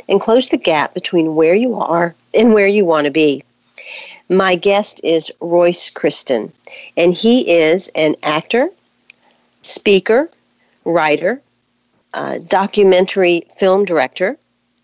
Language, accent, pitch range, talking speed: English, American, 160-225 Hz, 120 wpm